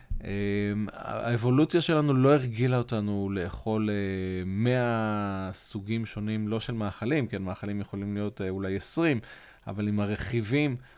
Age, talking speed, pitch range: 20-39, 115 wpm, 105-140 Hz